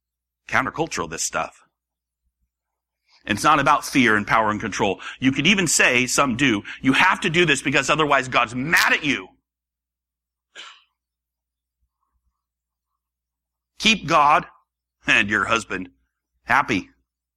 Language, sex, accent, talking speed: English, male, American, 120 wpm